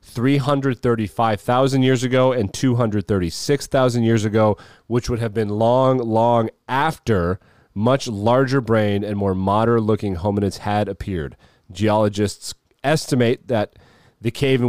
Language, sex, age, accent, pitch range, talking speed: English, male, 30-49, American, 100-120 Hz, 125 wpm